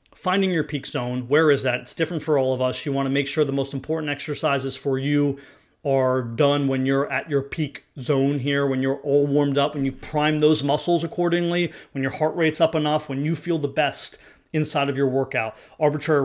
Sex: male